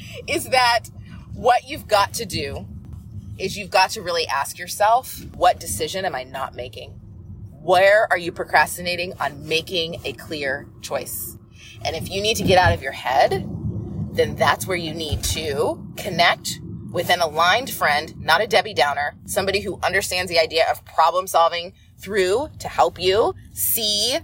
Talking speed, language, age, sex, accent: 165 wpm, English, 20-39, female, American